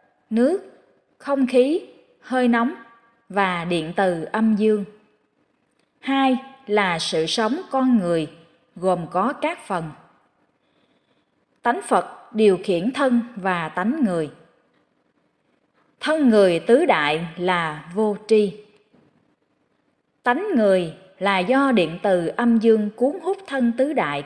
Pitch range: 185-265 Hz